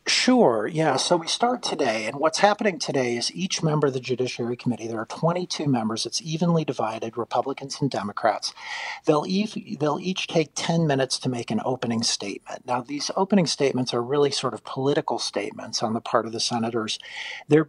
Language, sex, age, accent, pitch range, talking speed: English, male, 50-69, American, 120-155 Hz, 190 wpm